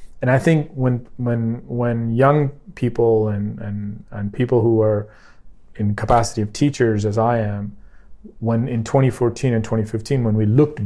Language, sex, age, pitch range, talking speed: English, male, 30-49, 100-120 Hz, 160 wpm